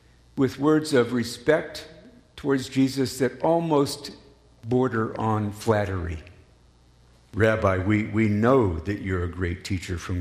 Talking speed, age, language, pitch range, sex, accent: 125 wpm, 50-69, English, 95-155 Hz, male, American